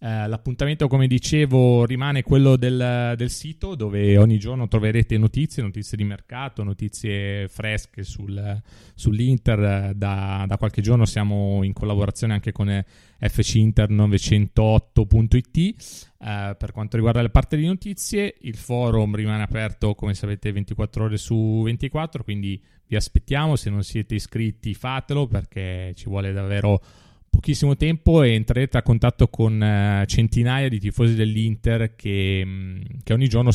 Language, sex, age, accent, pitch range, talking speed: Italian, male, 30-49, native, 105-125 Hz, 135 wpm